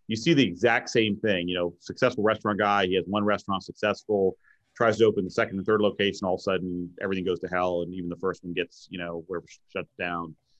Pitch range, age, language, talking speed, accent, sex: 95-110 Hz, 30-49, English, 240 wpm, American, male